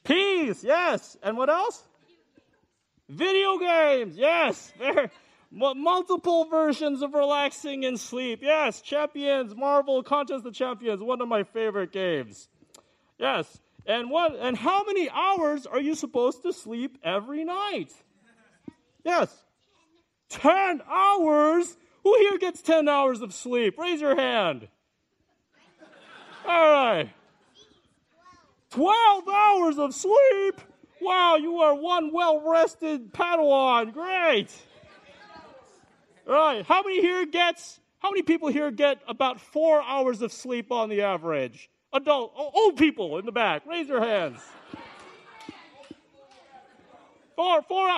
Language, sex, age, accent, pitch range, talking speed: English, male, 40-59, American, 265-345 Hz, 120 wpm